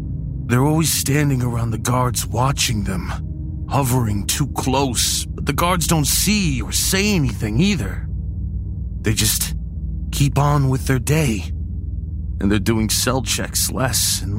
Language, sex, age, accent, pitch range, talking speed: English, male, 40-59, American, 90-130 Hz, 140 wpm